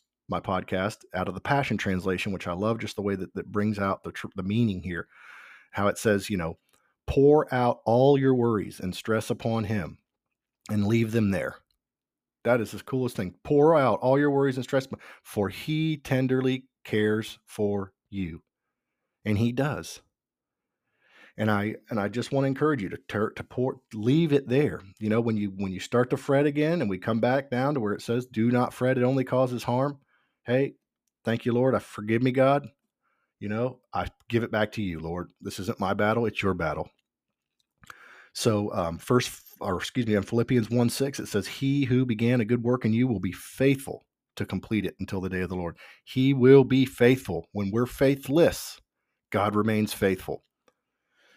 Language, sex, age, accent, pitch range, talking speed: English, male, 40-59, American, 100-130 Hz, 200 wpm